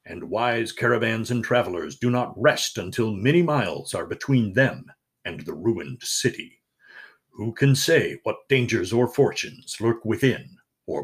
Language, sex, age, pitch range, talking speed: English, male, 60-79, 110-135 Hz, 150 wpm